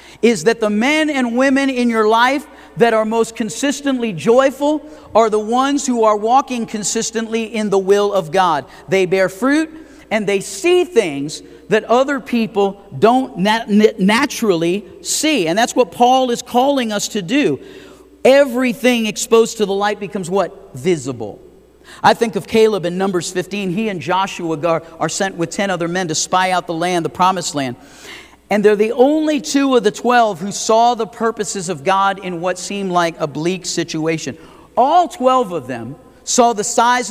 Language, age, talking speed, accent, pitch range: English, 50-69, 175 wpm, American, 190-245 Hz